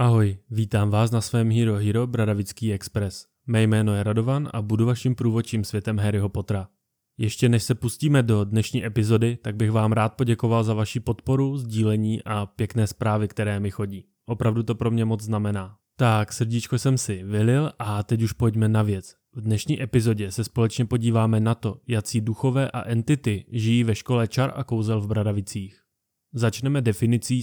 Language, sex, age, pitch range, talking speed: Czech, male, 20-39, 110-125 Hz, 175 wpm